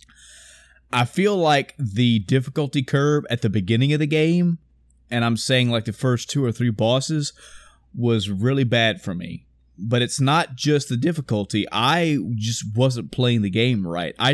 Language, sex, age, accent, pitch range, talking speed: English, male, 30-49, American, 110-145 Hz, 170 wpm